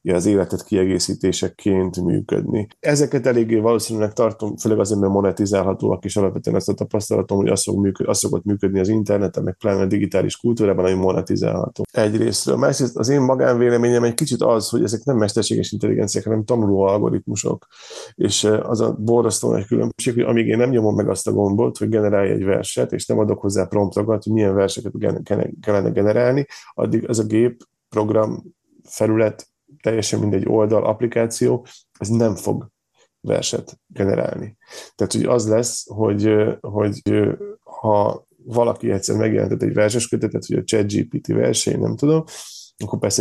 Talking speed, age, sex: 155 wpm, 30-49, male